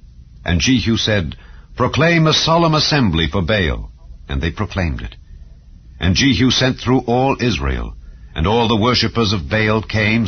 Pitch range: 80-115 Hz